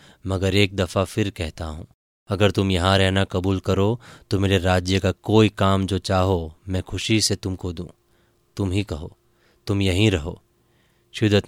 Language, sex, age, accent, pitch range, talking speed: Hindi, male, 20-39, native, 95-110 Hz, 165 wpm